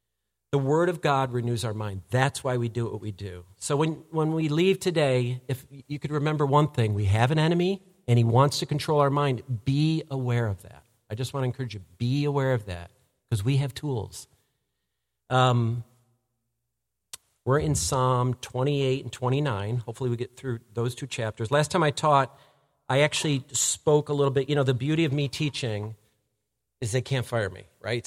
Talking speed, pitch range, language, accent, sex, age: 195 wpm, 115-155 Hz, English, American, male, 50-69